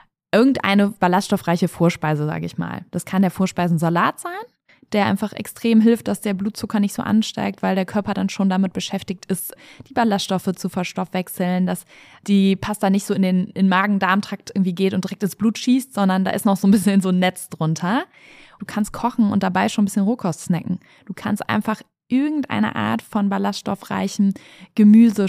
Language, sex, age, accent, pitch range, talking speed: German, female, 20-39, German, 190-230 Hz, 185 wpm